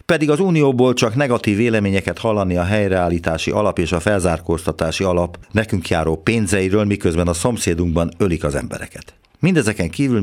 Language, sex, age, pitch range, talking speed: Hungarian, male, 50-69, 85-115 Hz, 145 wpm